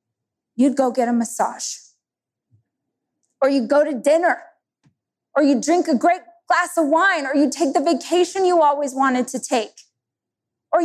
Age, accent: 20-39, American